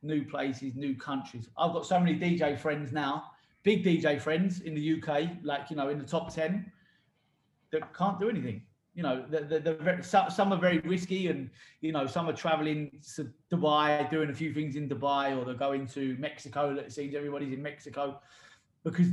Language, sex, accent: English, male, British